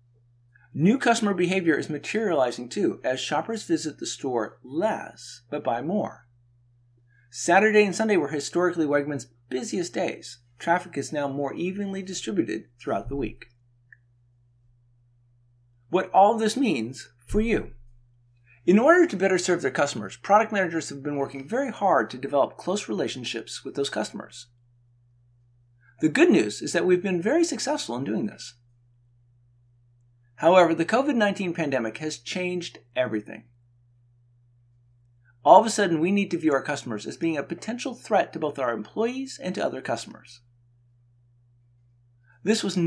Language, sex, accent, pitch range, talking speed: English, male, American, 120-180 Hz, 145 wpm